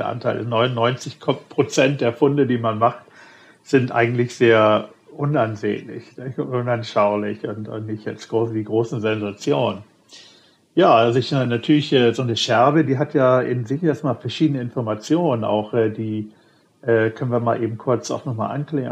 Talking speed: 150 wpm